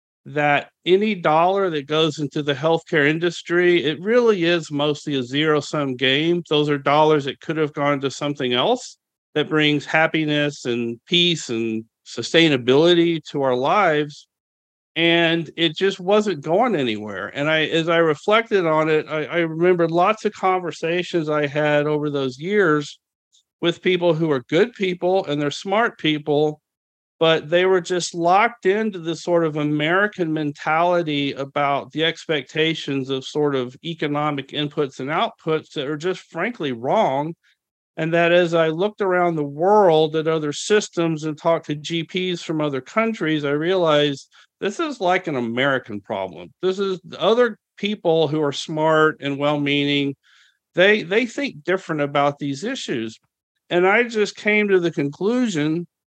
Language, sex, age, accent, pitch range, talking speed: English, male, 50-69, American, 145-175 Hz, 155 wpm